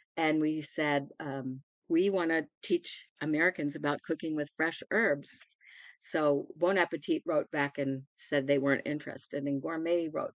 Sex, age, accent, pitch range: female, 50-69, American, 140-160 Hz